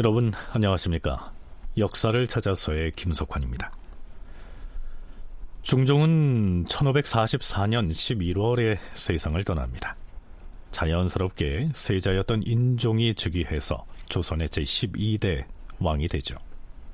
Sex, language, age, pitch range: male, Korean, 40-59, 85-130 Hz